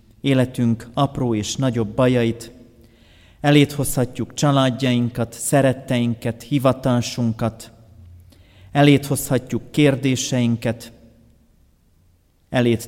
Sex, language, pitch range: male, Hungarian, 105-120 Hz